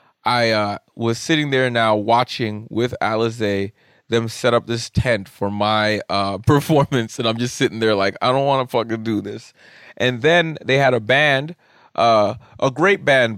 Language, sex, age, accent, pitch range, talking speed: English, male, 30-49, American, 115-150 Hz, 185 wpm